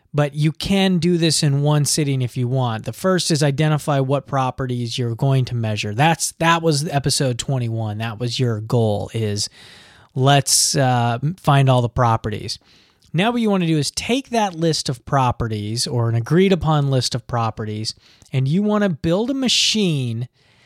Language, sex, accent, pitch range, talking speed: English, male, American, 125-165 Hz, 180 wpm